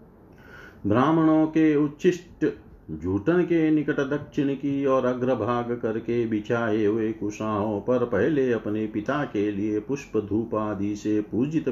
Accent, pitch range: native, 105-125 Hz